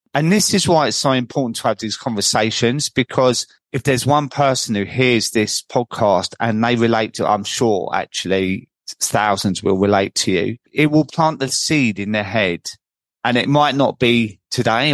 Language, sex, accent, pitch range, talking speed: English, male, British, 110-135 Hz, 190 wpm